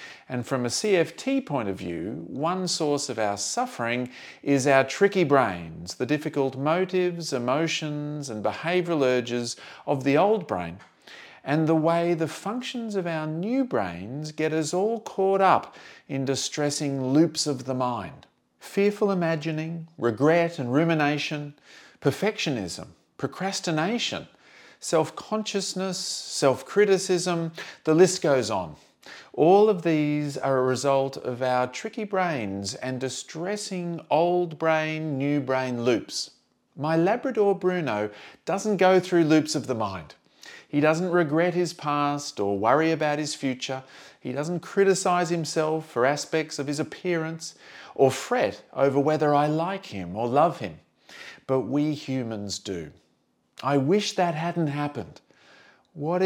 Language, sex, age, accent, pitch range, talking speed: English, male, 40-59, Australian, 135-180 Hz, 135 wpm